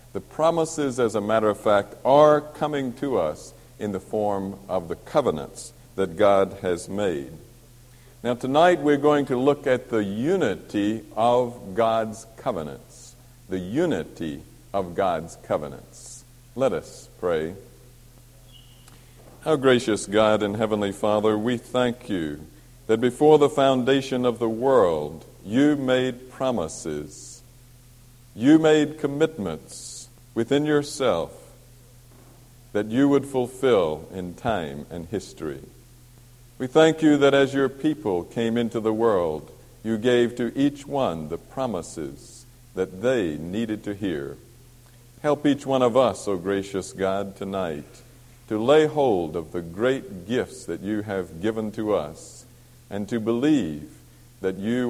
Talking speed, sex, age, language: 135 wpm, male, 60-79, English